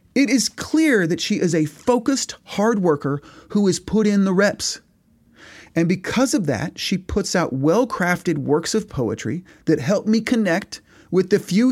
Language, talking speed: English, 175 wpm